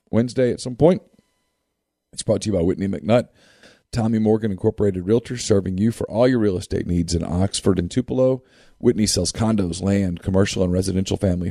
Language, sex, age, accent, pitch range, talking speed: English, male, 40-59, American, 95-120 Hz, 180 wpm